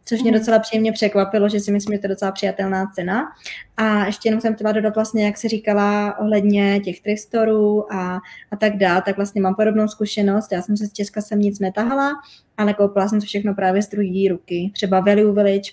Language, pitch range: Czech, 190-210 Hz